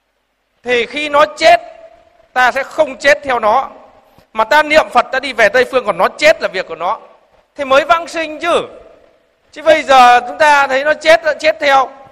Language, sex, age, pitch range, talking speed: Vietnamese, male, 20-39, 240-315 Hz, 205 wpm